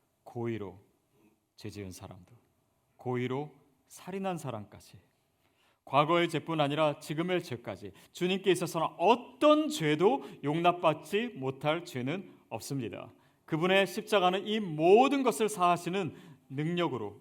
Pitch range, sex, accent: 130-190 Hz, male, native